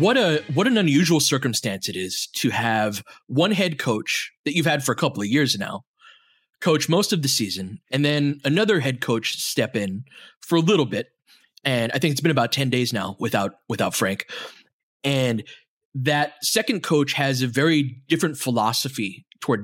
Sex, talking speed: male, 185 wpm